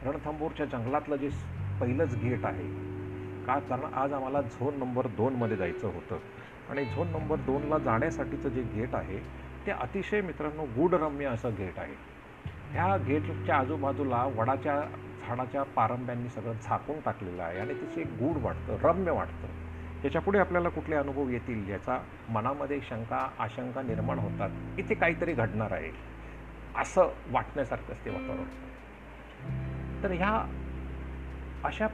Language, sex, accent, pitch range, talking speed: Marathi, male, native, 95-145 Hz, 130 wpm